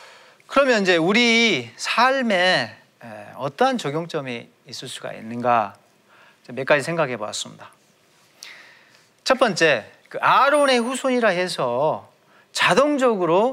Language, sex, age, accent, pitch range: Korean, male, 40-59, native, 140-230 Hz